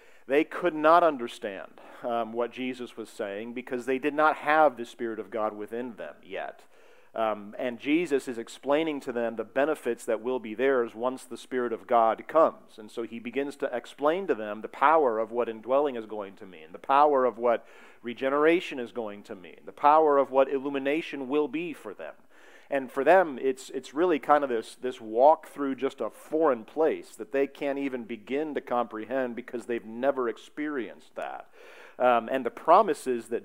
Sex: male